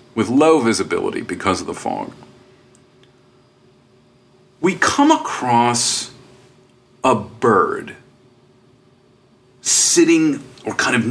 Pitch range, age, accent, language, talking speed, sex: 115-130 Hz, 40-59, American, English, 85 wpm, male